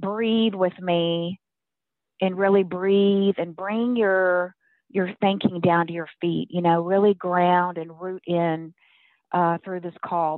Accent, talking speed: American, 150 wpm